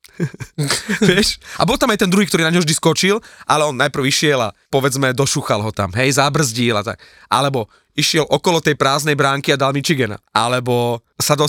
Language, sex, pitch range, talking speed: Slovak, male, 125-155 Hz, 195 wpm